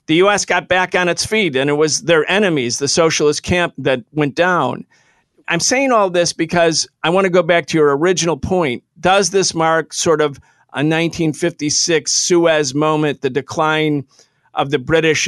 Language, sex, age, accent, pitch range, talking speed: English, male, 50-69, American, 140-175 Hz, 180 wpm